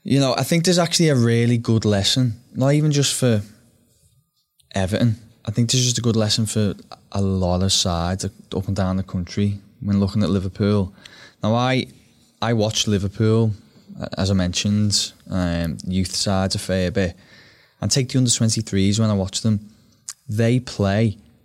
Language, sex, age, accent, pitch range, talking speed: English, male, 20-39, British, 95-115 Hz, 170 wpm